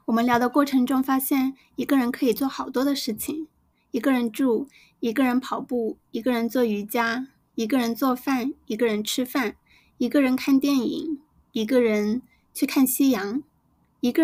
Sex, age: female, 20-39